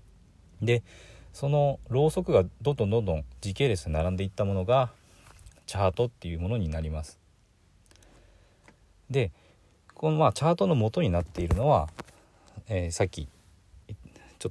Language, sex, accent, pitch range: Japanese, male, native, 80-115 Hz